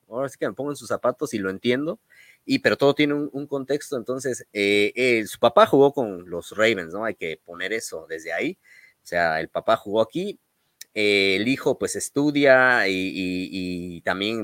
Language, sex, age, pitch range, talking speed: Spanish, male, 30-49, 100-145 Hz, 210 wpm